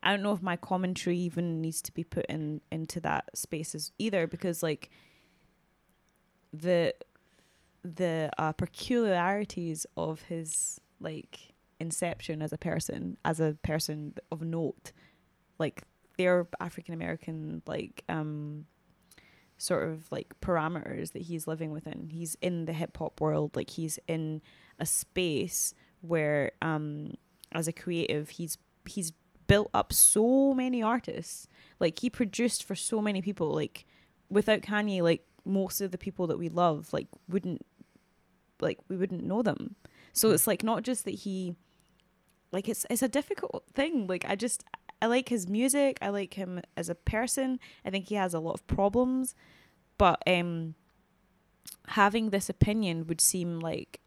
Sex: female